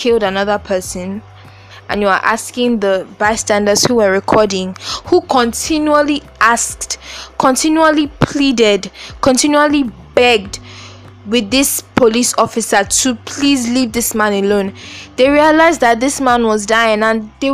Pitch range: 195-255 Hz